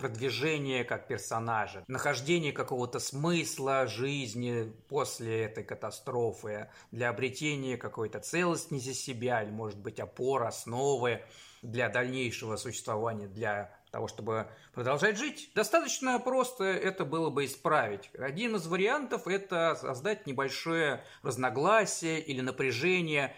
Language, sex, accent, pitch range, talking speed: Russian, male, native, 120-170 Hz, 110 wpm